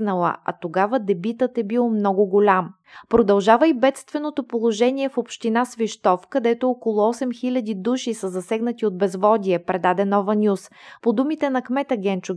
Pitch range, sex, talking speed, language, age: 200-245 Hz, female, 145 wpm, Bulgarian, 20-39